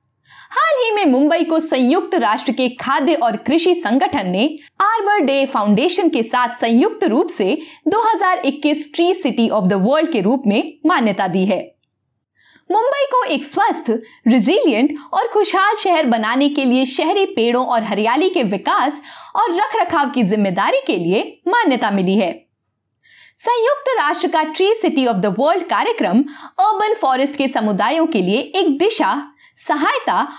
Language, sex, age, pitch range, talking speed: Hindi, female, 20-39, 235-375 Hz, 150 wpm